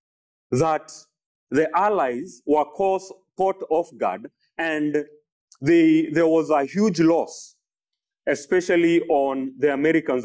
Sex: male